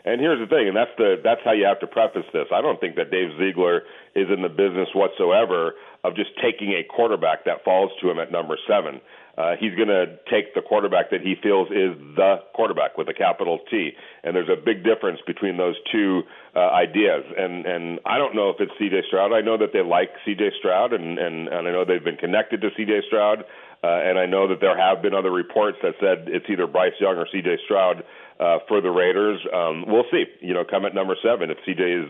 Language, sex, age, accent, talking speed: English, male, 40-59, American, 235 wpm